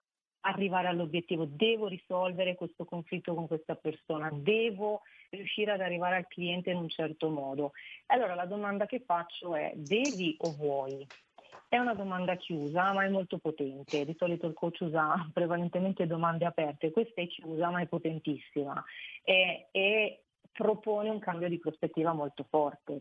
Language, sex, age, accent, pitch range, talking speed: Italian, female, 40-59, native, 155-195 Hz, 155 wpm